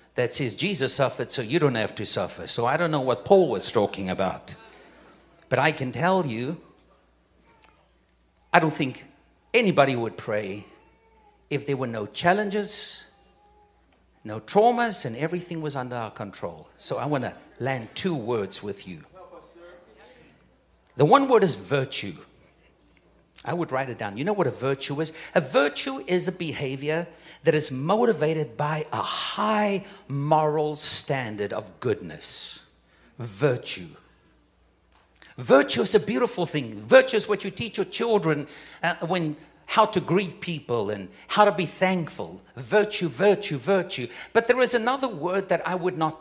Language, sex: English, male